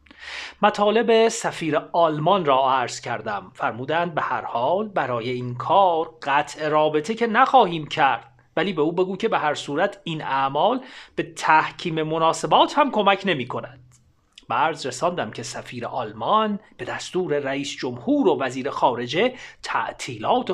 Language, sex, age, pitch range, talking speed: Persian, male, 40-59, 145-210 Hz, 140 wpm